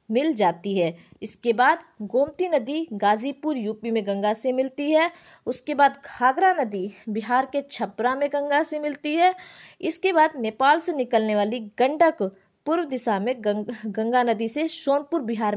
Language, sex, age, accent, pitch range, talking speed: Hindi, female, 20-39, native, 210-290 Hz, 160 wpm